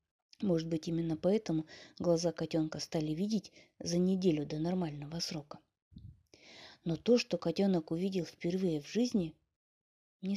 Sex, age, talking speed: female, 20-39, 125 wpm